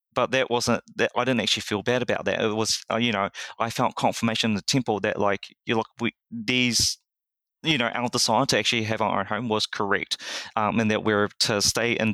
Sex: male